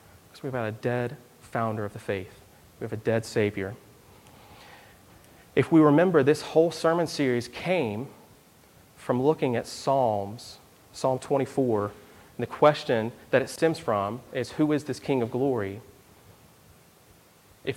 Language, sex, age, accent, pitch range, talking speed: English, male, 30-49, American, 105-140 Hz, 140 wpm